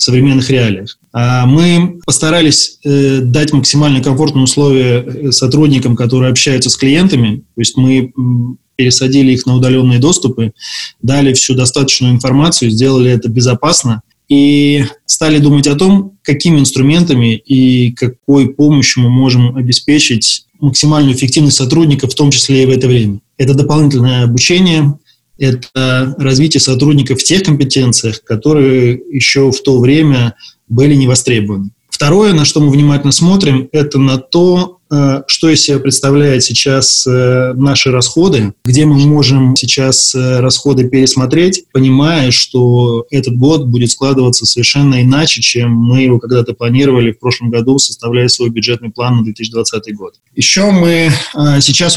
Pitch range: 125-145 Hz